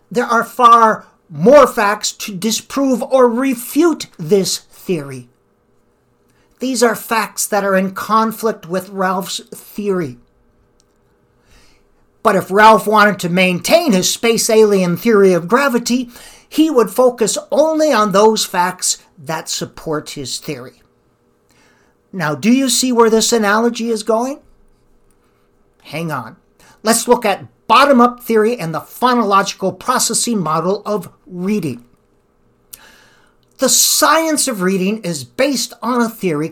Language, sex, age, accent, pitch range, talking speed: English, male, 50-69, American, 175-240 Hz, 125 wpm